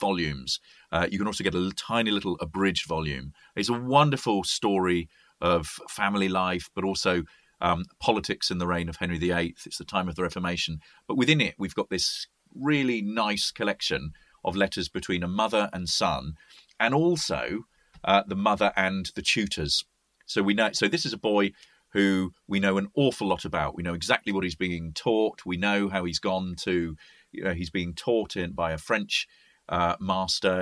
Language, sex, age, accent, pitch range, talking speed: English, male, 40-59, British, 85-100 Hz, 190 wpm